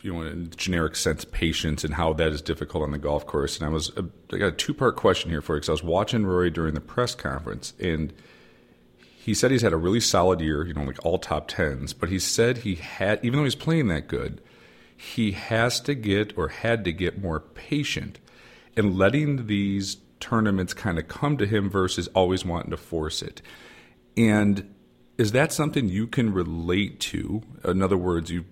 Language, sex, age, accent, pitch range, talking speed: English, male, 40-59, American, 85-105 Hz, 210 wpm